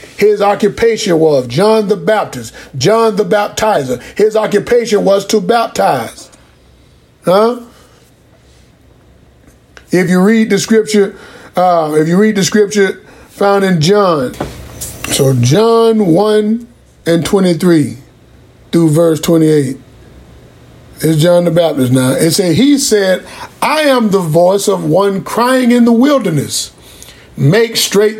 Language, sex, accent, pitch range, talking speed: English, male, American, 165-220 Hz, 125 wpm